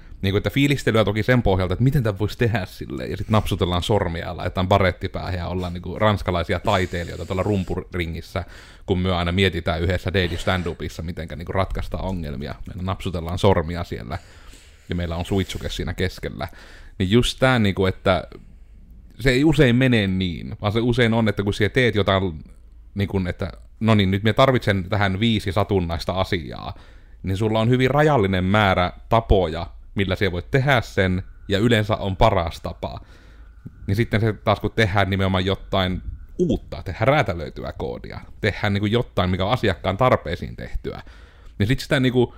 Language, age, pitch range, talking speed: Finnish, 30-49, 90-105 Hz, 170 wpm